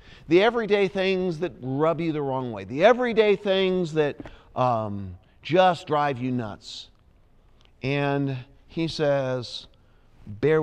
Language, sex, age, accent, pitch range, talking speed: English, male, 40-59, American, 120-175 Hz, 125 wpm